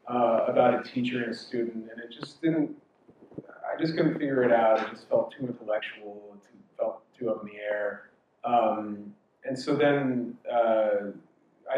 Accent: American